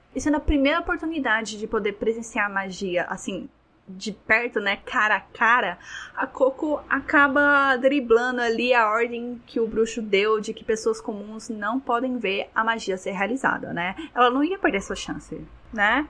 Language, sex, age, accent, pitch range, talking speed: Portuguese, female, 10-29, Brazilian, 215-270 Hz, 175 wpm